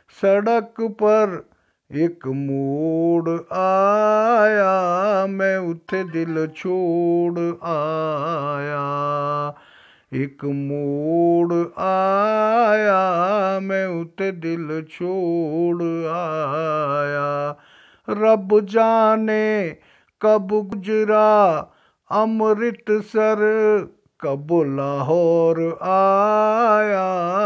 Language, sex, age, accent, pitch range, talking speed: Hindi, male, 50-69, native, 155-200 Hz, 55 wpm